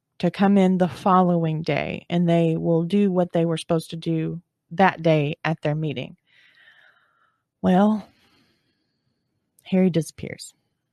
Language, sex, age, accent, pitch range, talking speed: English, female, 30-49, American, 160-200 Hz, 130 wpm